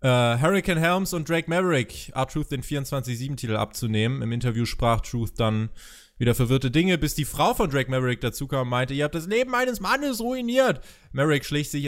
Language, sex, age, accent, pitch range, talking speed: German, male, 20-39, German, 125-180 Hz, 190 wpm